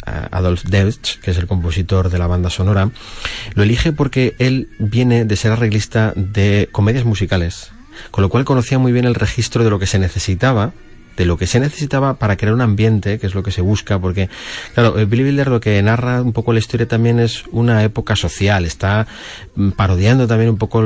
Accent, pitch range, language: Spanish, 95-120 Hz, Spanish